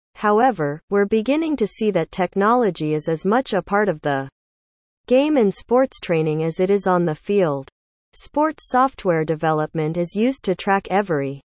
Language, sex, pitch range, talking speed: English, female, 155-225 Hz, 165 wpm